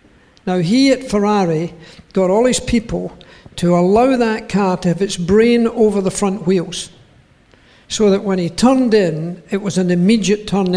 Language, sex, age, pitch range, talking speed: English, male, 60-79, 185-235 Hz, 175 wpm